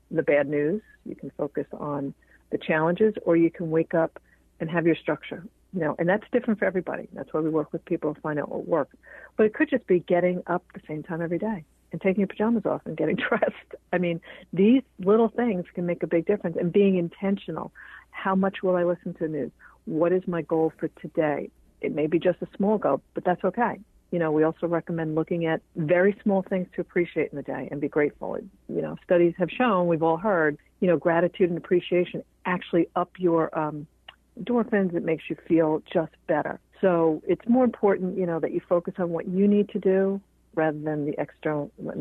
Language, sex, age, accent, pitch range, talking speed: English, female, 50-69, American, 160-195 Hz, 220 wpm